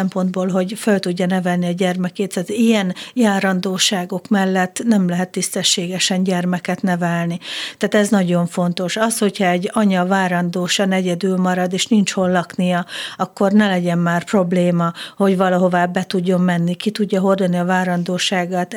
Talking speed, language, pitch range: 145 wpm, Hungarian, 185-210 Hz